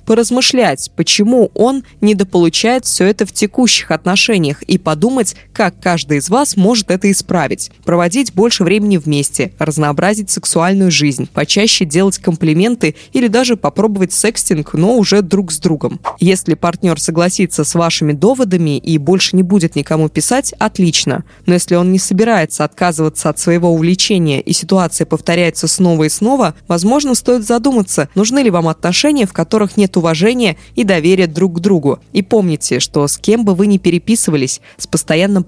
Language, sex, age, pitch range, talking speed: Russian, female, 20-39, 160-205 Hz, 155 wpm